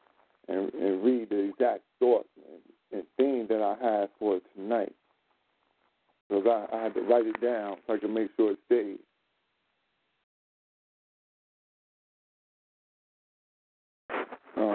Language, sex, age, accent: Japanese, male, 50-69, American